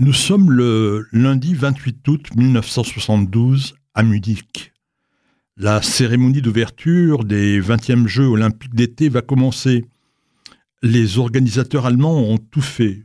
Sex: male